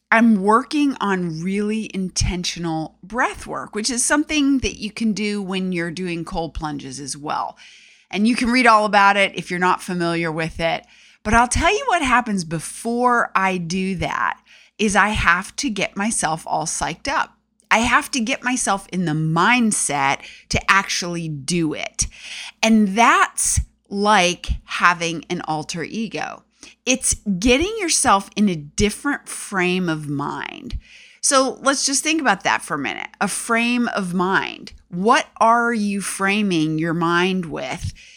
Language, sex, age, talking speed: English, female, 30-49, 160 wpm